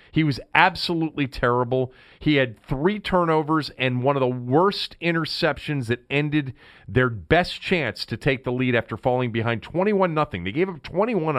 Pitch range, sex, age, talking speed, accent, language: 115-165 Hz, male, 40-59, 170 wpm, American, English